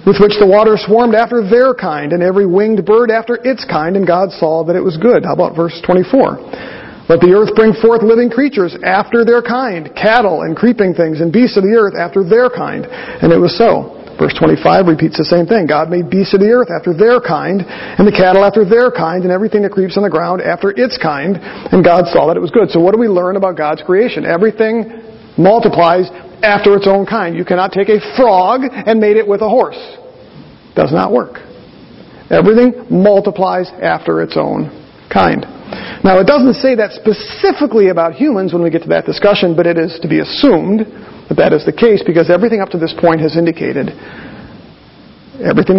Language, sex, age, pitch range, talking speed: English, male, 50-69, 175-225 Hz, 210 wpm